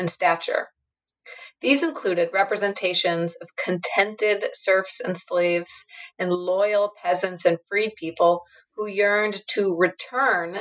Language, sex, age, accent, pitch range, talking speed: English, female, 30-49, American, 175-250 Hz, 115 wpm